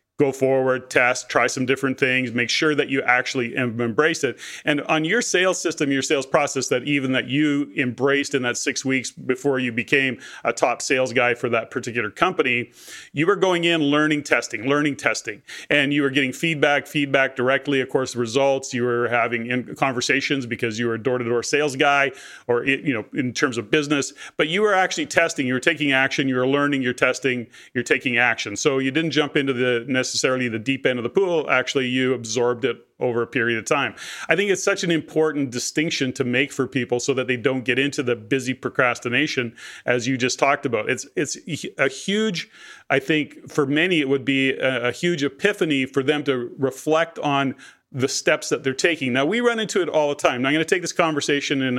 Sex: male